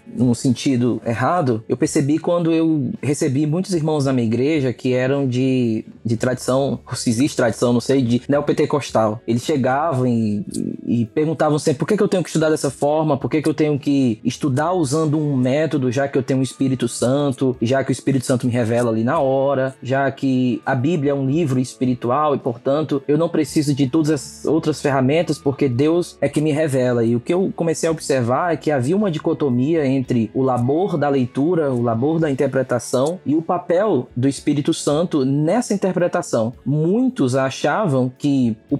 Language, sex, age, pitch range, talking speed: Portuguese, male, 20-39, 130-170 Hz, 195 wpm